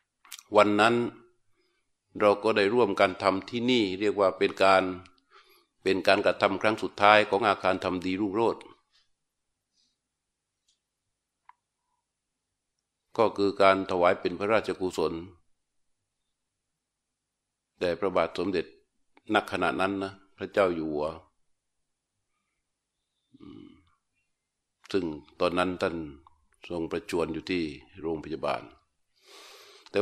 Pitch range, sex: 95-115 Hz, male